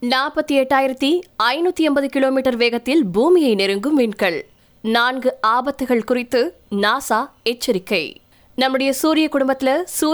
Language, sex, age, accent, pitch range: Tamil, female, 20-39, native, 220-295 Hz